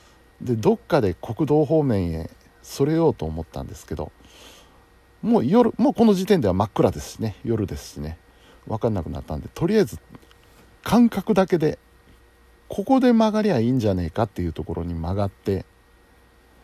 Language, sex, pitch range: Japanese, male, 90-125 Hz